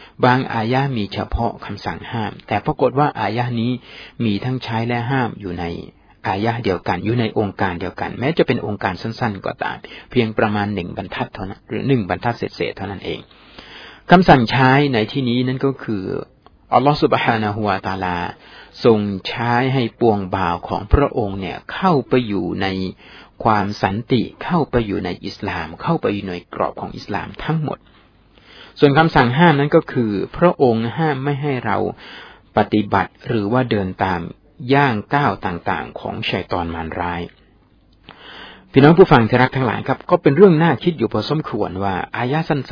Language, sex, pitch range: Thai, male, 105-140 Hz